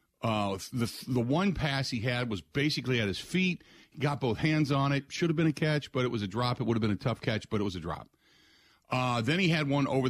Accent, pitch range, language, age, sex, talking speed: American, 115-155 Hz, English, 50-69, male, 275 wpm